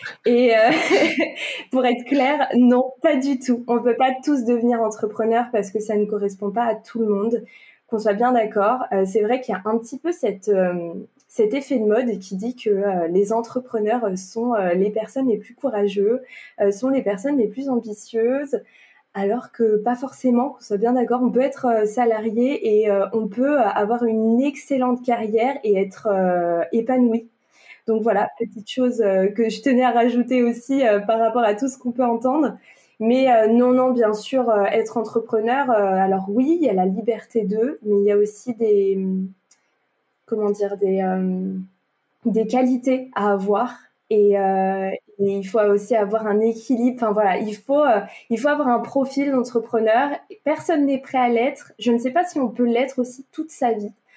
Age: 20-39